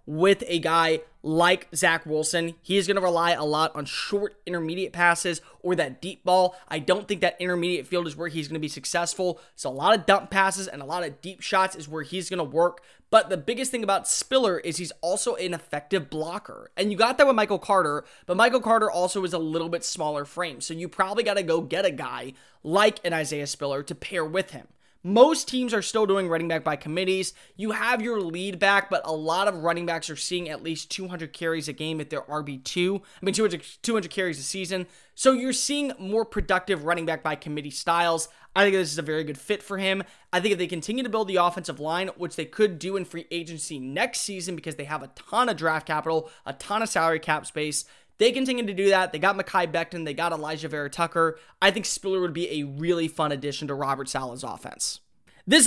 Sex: male